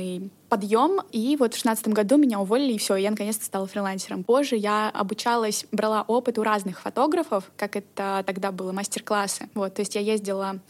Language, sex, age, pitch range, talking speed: Russian, female, 20-39, 195-230 Hz, 180 wpm